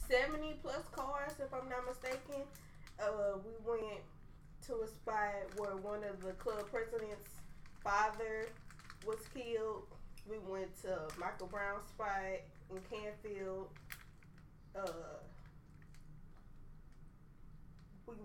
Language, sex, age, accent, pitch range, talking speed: English, female, 20-39, American, 190-235 Hz, 105 wpm